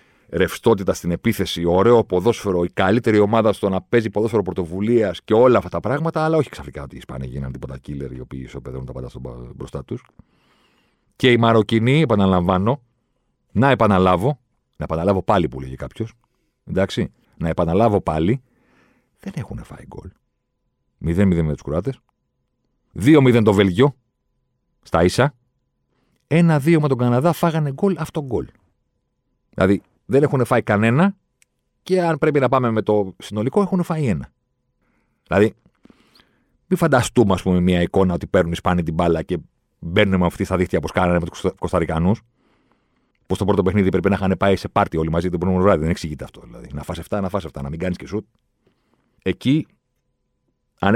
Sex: male